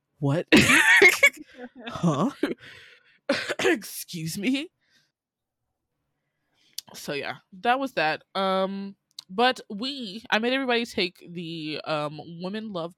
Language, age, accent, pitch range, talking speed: English, 20-39, American, 165-235 Hz, 95 wpm